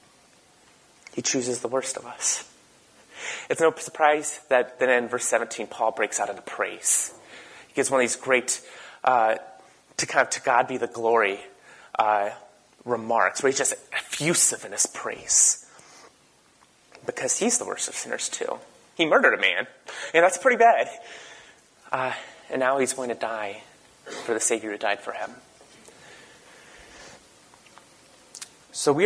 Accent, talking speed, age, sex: American, 155 wpm, 30-49, male